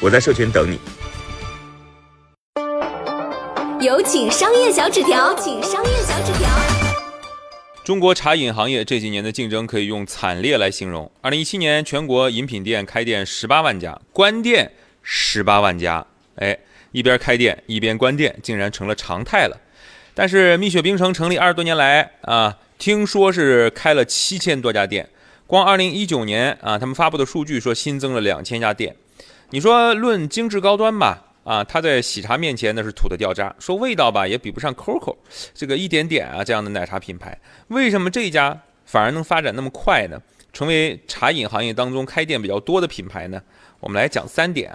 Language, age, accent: Chinese, 30-49, native